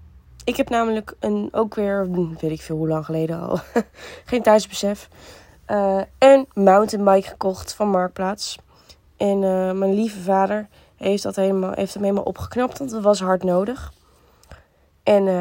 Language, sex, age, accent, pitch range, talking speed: Dutch, female, 20-39, Dutch, 180-225 Hz, 150 wpm